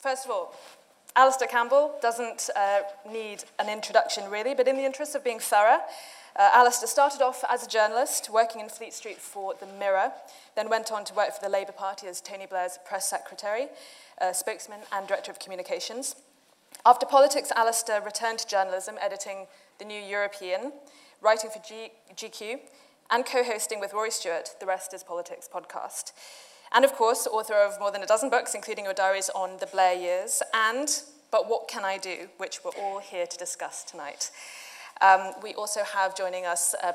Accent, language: British, English